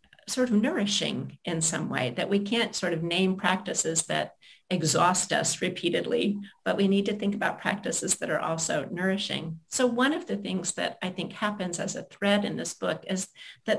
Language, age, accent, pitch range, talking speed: English, 50-69, American, 170-205 Hz, 195 wpm